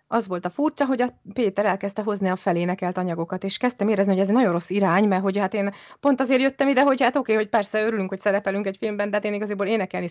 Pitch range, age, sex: 185-240 Hz, 30-49, female